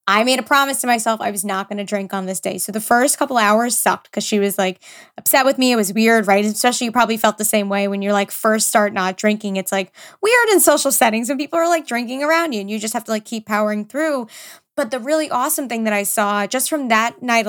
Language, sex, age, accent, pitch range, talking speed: English, female, 20-39, American, 210-255 Hz, 275 wpm